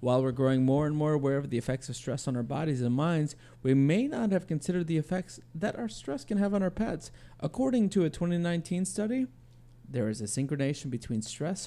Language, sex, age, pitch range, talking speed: English, male, 30-49, 120-180 Hz, 220 wpm